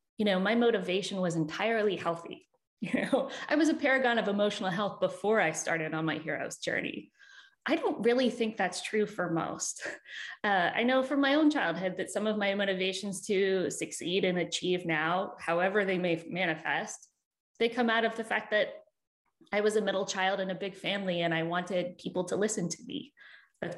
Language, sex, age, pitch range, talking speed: English, female, 20-39, 175-225 Hz, 195 wpm